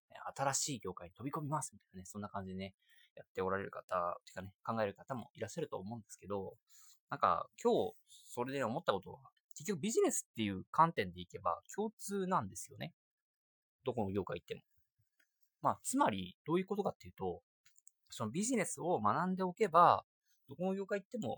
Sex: male